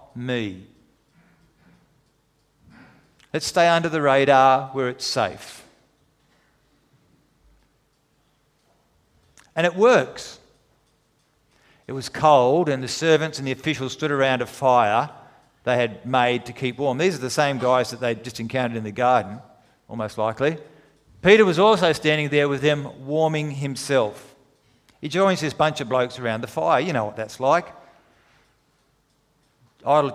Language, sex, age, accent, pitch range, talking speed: English, male, 40-59, Australian, 125-155 Hz, 140 wpm